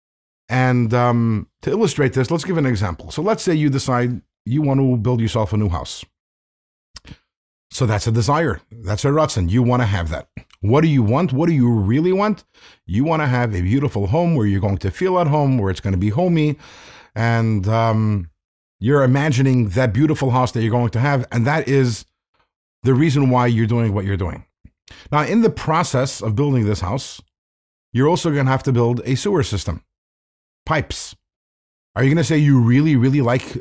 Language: English